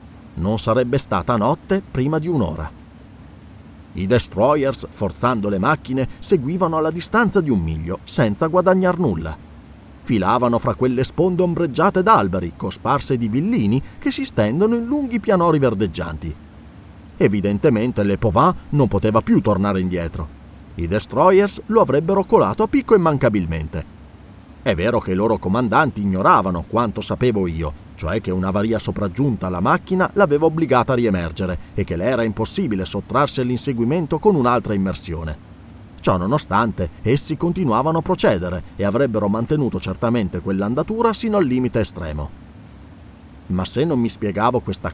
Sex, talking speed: male, 140 wpm